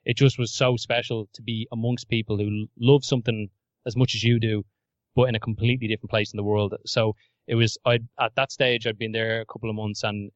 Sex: male